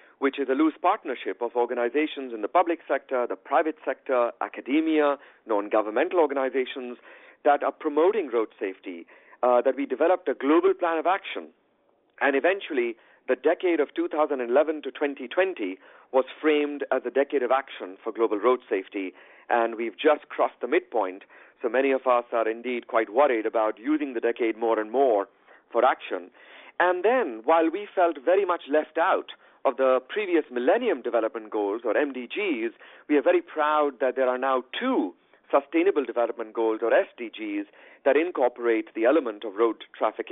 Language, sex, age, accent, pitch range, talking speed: English, male, 50-69, Indian, 125-180 Hz, 165 wpm